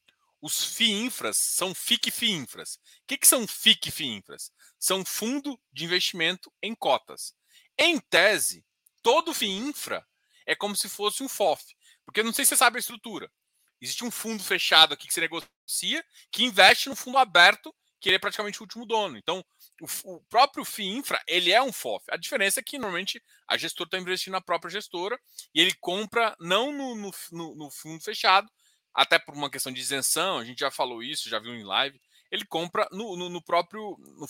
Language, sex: Portuguese, male